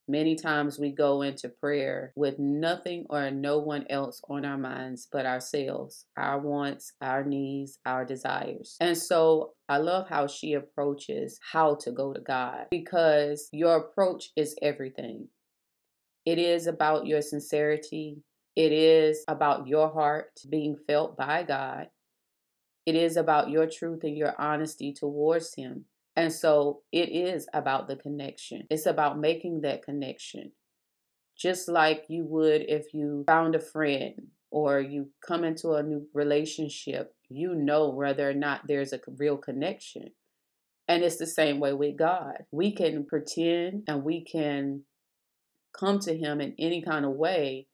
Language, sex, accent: English, female, American